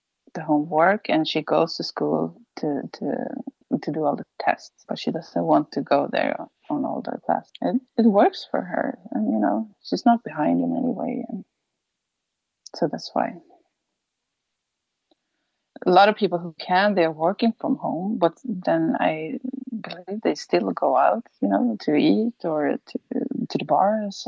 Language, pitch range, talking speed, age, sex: English, 175-250 Hz, 175 wpm, 20-39, female